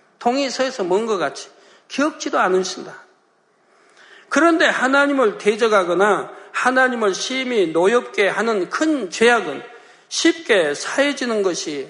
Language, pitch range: Korean, 195-275 Hz